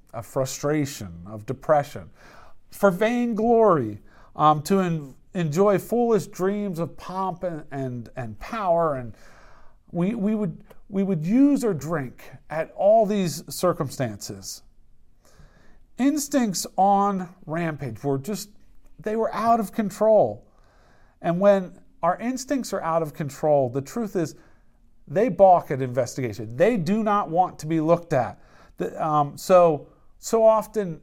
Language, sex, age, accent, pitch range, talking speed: English, male, 40-59, American, 150-220 Hz, 135 wpm